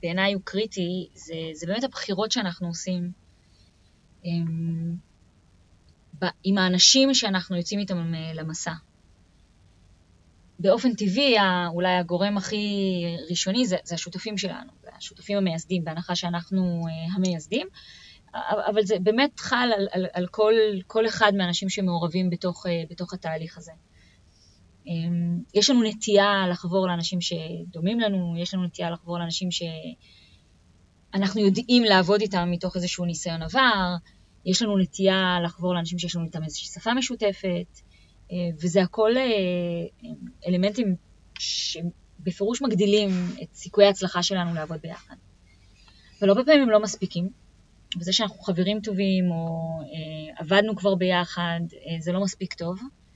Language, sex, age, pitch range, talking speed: Hebrew, female, 20-39, 165-200 Hz, 120 wpm